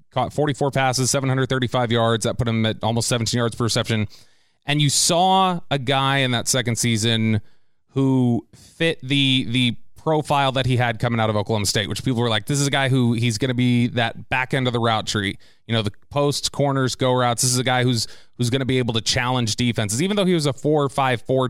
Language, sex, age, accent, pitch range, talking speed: English, male, 30-49, American, 115-135 Hz, 235 wpm